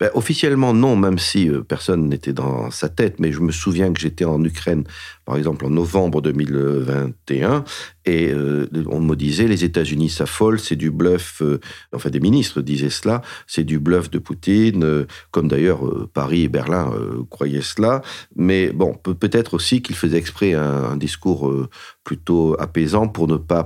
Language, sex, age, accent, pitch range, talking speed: French, male, 50-69, French, 75-90 Hz, 160 wpm